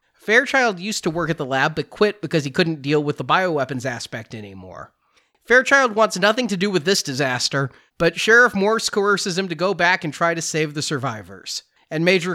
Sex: male